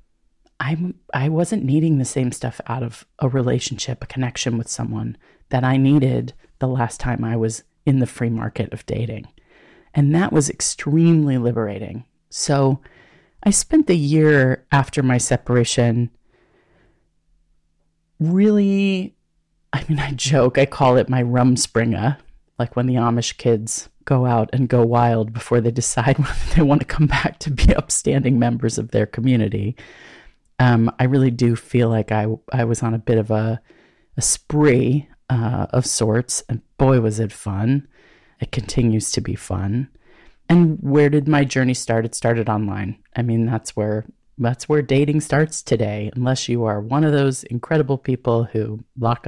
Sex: female